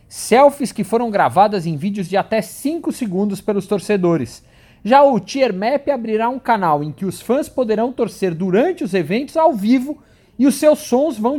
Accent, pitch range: Brazilian, 175-235 Hz